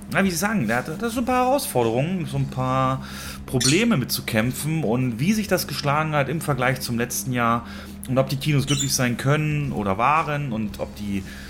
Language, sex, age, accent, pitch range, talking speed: German, male, 30-49, German, 100-135 Hz, 200 wpm